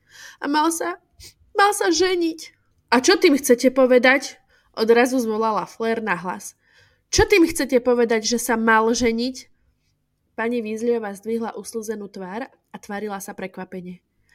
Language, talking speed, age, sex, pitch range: Slovak, 140 wpm, 20-39, female, 225-280 Hz